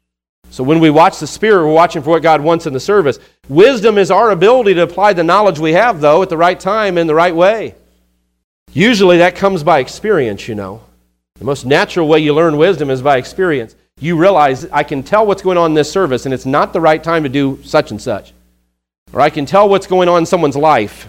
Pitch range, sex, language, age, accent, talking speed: 125-180 Hz, male, English, 40-59, American, 235 wpm